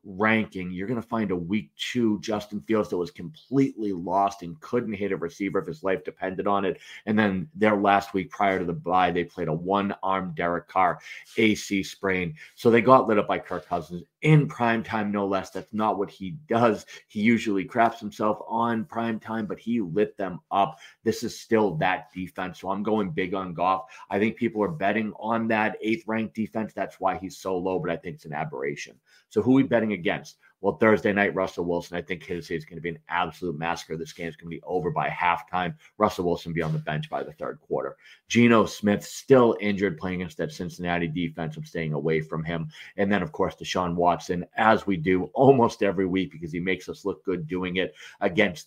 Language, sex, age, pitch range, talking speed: English, male, 30-49, 85-110 Hz, 220 wpm